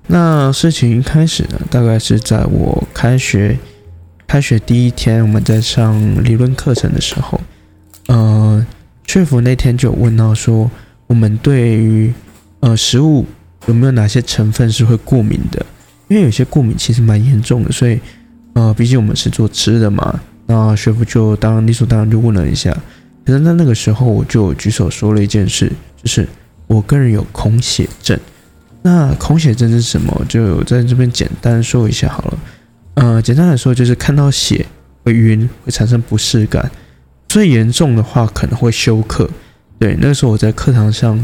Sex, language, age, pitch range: male, Chinese, 20-39, 110-130 Hz